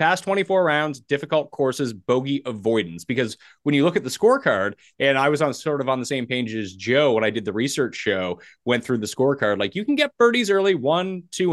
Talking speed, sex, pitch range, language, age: 230 wpm, male, 110-155 Hz, English, 20-39